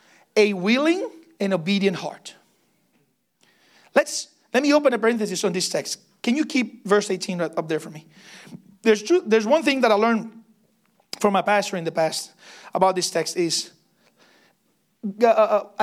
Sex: male